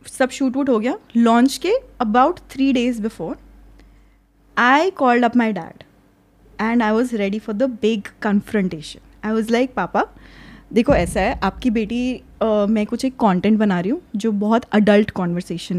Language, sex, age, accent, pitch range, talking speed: Hindi, female, 20-39, native, 210-255 Hz, 170 wpm